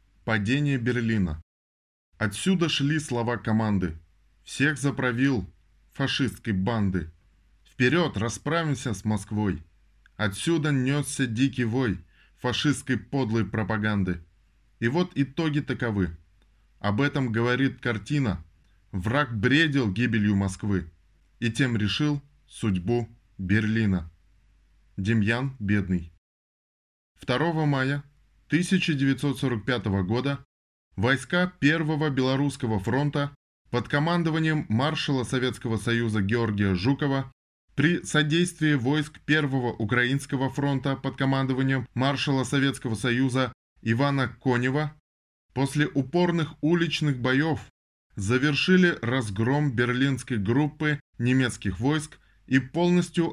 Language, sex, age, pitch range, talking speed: Russian, male, 20-39, 105-140 Hz, 90 wpm